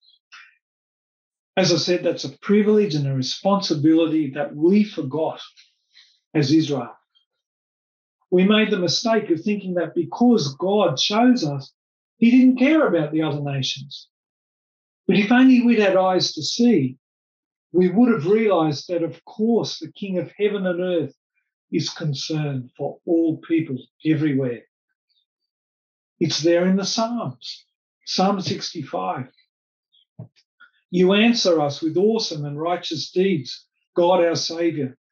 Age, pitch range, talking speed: 50-69, 150-200 Hz, 130 wpm